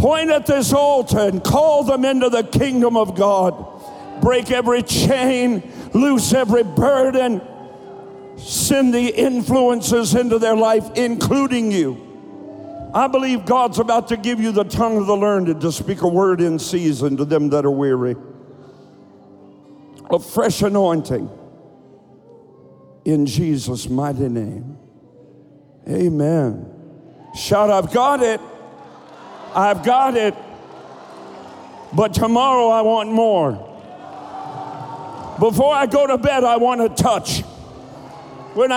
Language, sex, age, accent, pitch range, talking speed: English, male, 60-79, American, 165-270 Hz, 120 wpm